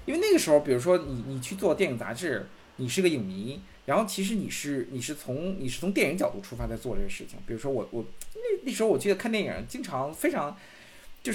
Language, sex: Chinese, male